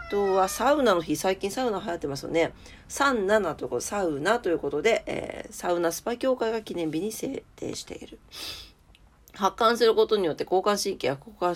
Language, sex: Japanese, female